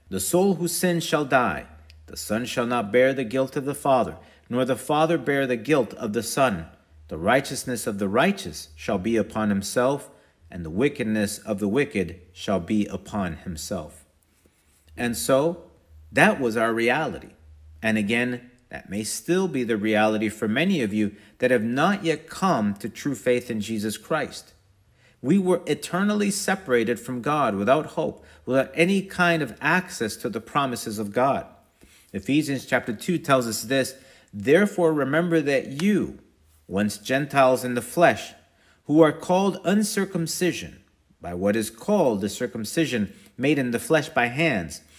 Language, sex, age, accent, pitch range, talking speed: English, male, 50-69, American, 100-155 Hz, 165 wpm